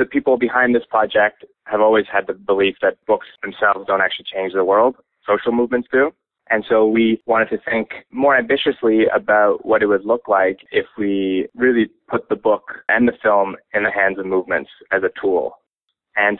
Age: 20-39